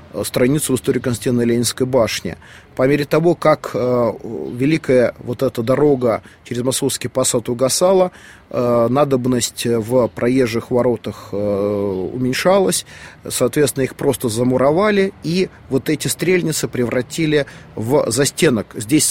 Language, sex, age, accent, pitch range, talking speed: Russian, male, 30-49, native, 115-145 Hz, 120 wpm